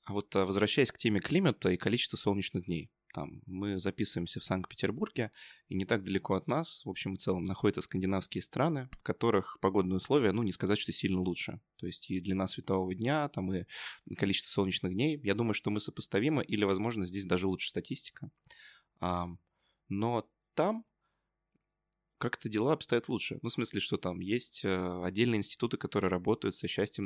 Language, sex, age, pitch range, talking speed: Russian, male, 20-39, 90-115 Hz, 170 wpm